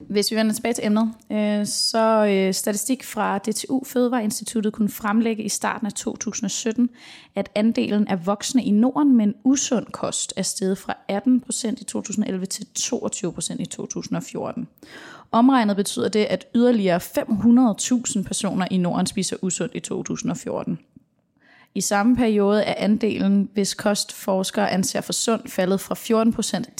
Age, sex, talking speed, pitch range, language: 20-39, female, 140 wpm, 195-230 Hz, English